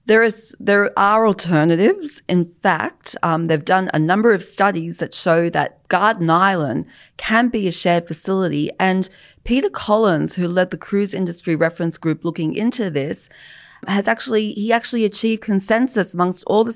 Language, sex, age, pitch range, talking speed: English, female, 40-59, 160-200 Hz, 165 wpm